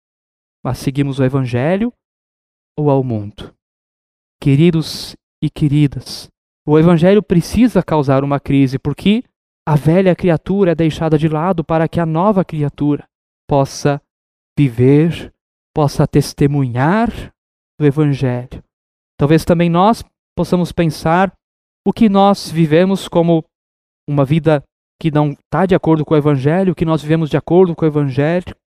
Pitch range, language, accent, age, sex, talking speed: 145-190 Hz, Portuguese, Brazilian, 20-39, male, 135 wpm